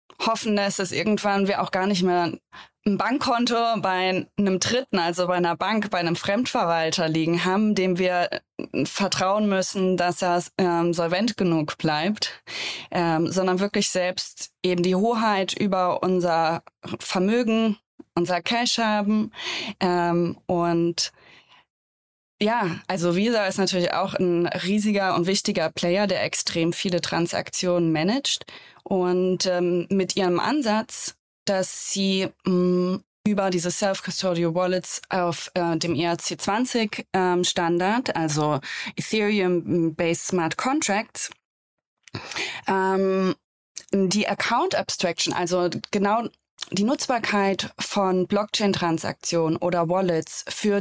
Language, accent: German, German